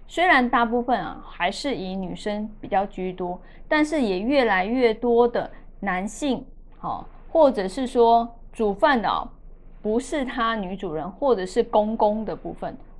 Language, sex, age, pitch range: Chinese, female, 20-39, 205-255 Hz